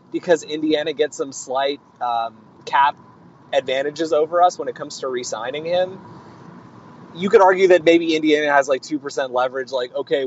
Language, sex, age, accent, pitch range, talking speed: English, male, 20-39, American, 130-175 Hz, 165 wpm